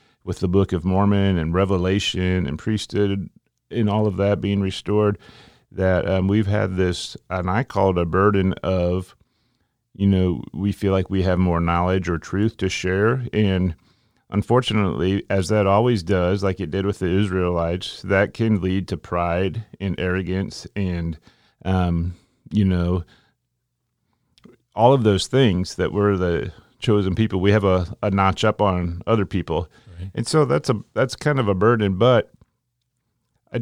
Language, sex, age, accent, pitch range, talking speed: English, male, 40-59, American, 90-105 Hz, 165 wpm